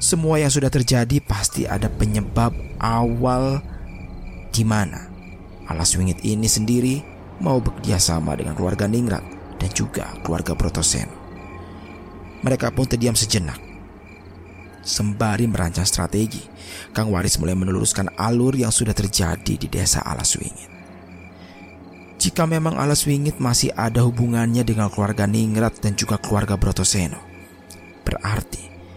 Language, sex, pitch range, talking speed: Indonesian, male, 90-115 Hz, 115 wpm